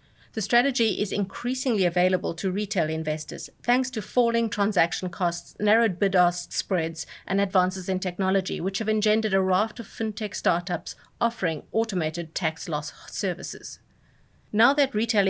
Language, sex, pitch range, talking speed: English, female, 175-210 Hz, 145 wpm